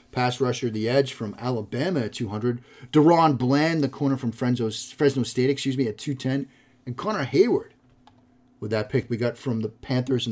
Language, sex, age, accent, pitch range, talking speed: English, male, 30-49, American, 115-140 Hz, 200 wpm